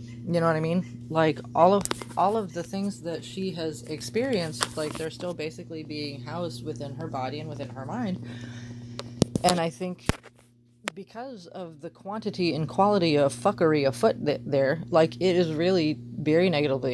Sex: female